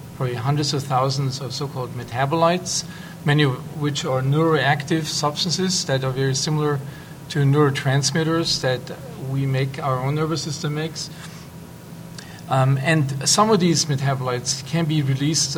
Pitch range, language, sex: 135-160 Hz, English, male